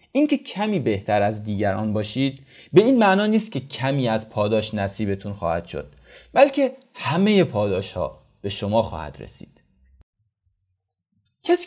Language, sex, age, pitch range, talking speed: Persian, male, 30-49, 105-165 Hz, 135 wpm